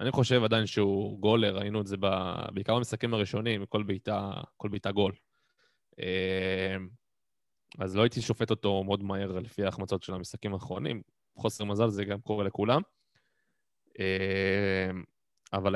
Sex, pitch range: male, 95-110 Hz